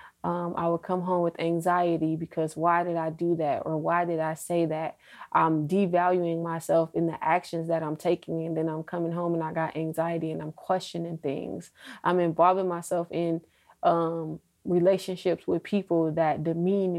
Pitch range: 165-185 Hz